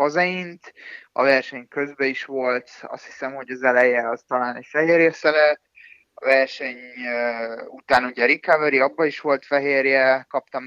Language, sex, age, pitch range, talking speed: Hungarian, male, 20-39, 125-150 Hz, 150 wpm